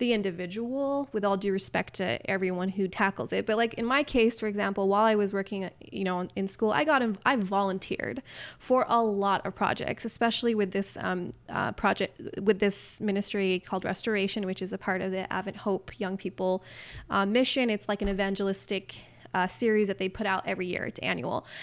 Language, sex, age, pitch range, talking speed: English, female, 20-39, 195-235 Hz, 205 wpm